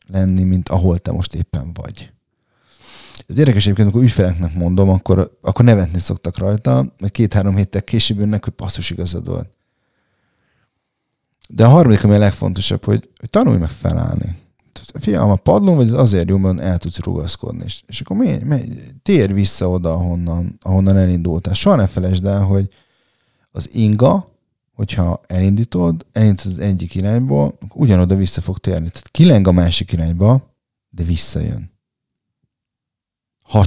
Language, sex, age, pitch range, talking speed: Hungarian, male, 30-49, 90-115 Hz, 145 wpm